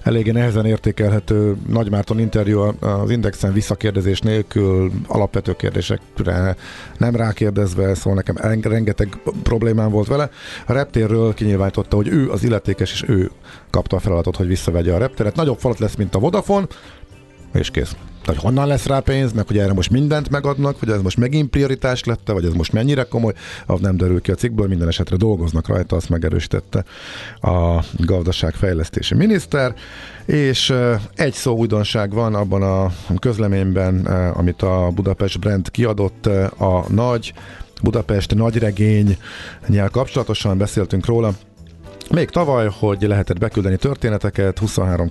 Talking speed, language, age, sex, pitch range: 145 wpm, Hungarian, 50-69, male, 90-110 Hz